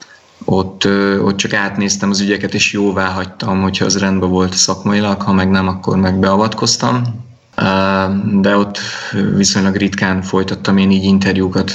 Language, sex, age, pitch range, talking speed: Hungarian, male, 20-39, 95-105 Hz, 140 wpm